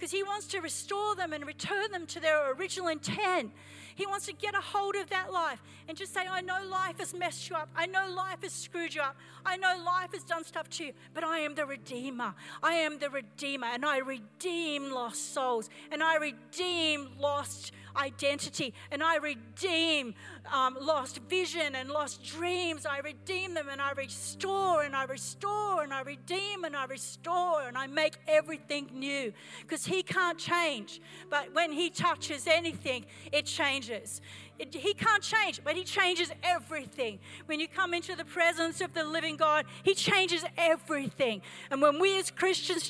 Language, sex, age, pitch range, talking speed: English, female, 50-69, 275-360 Hz, 185 wpm